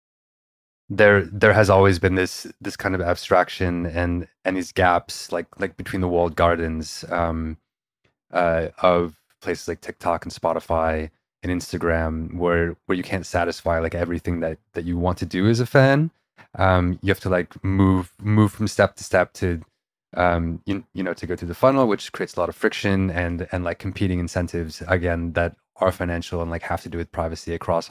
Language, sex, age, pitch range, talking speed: English, male, 20-39, 85-95 Hz, 195 wpm